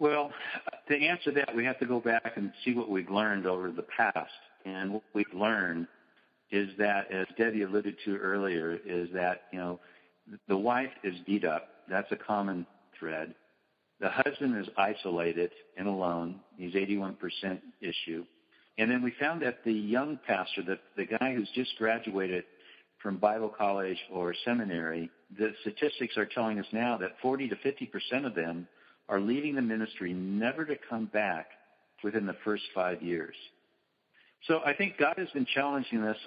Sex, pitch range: male, 95-115 Hz